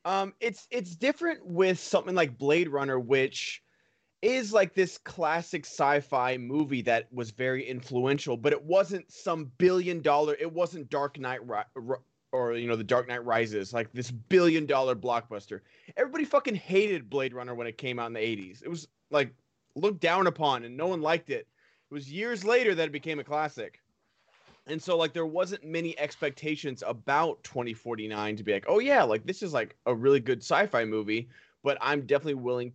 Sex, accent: male, American